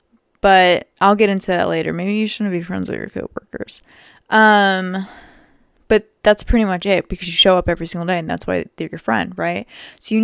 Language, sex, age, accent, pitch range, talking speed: English, female, 20-39, American, 185-220 Hz, 210 wpm